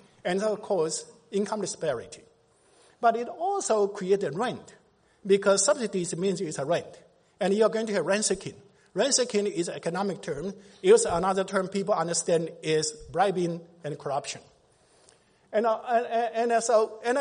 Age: 50-69